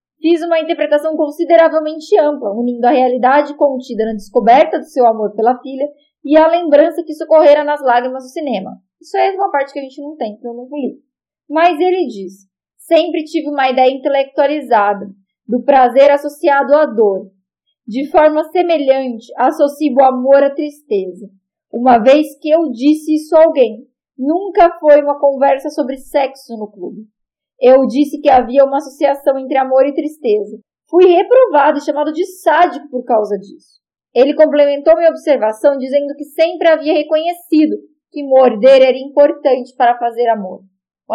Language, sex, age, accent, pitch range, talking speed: Portuguese, female, 10-29, Brazilian, 250-310 Hz, 165 wpm